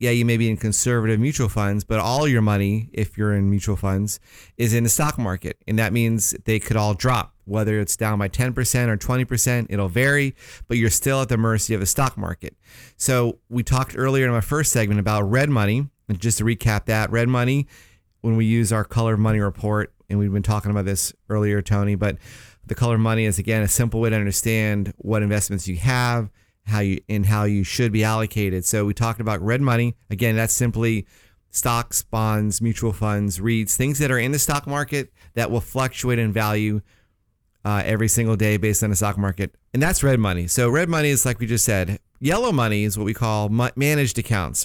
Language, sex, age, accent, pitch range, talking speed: English, male, 30-49, American, 105-120 Hz, 220 wpm